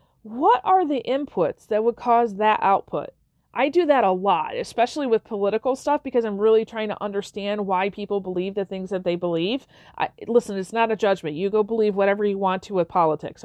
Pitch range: 200-265 Hz